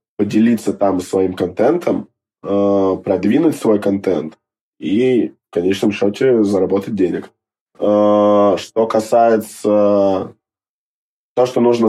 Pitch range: 95-110 Hz